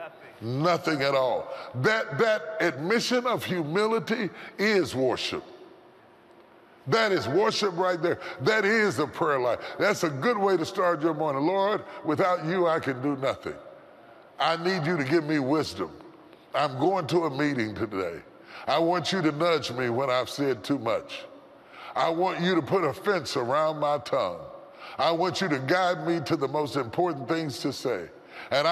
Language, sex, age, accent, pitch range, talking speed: English, female, 40-59, American, 145-195 Hz, 175 wpm